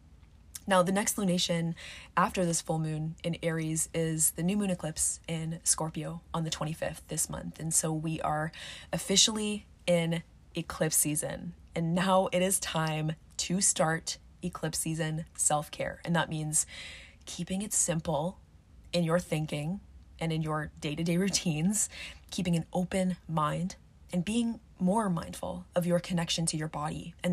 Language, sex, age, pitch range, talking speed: English, female, 20-39, 155-180 Hz, 150 wpm